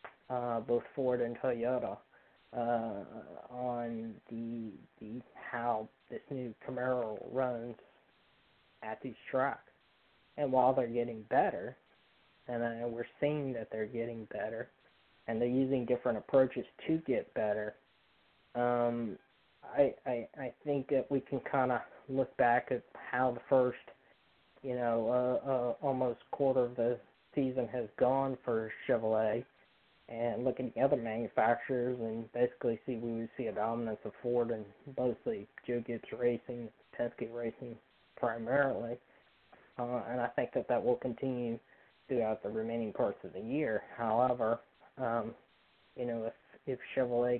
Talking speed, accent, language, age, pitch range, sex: 145 wpm, American, English, 20-39, 115-130 Hz, male